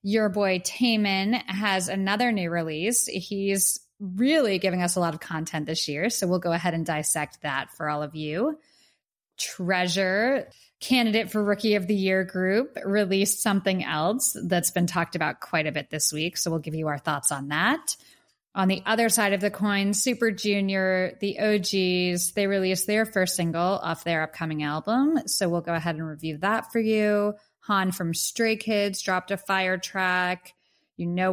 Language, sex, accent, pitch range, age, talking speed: English, female, American, 170-210 Hz, 20-39, 180 wpm